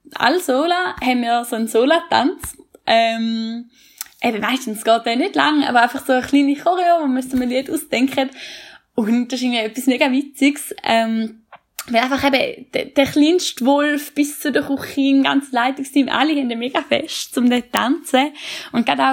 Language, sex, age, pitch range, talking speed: German, female, 10-29, 220-275 Hz, 185 wpm